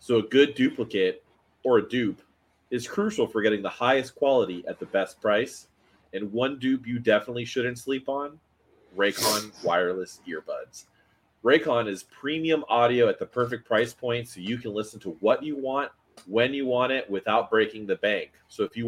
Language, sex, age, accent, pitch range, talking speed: English, male, 30-49, American, 105-135 Hz, 180 wpm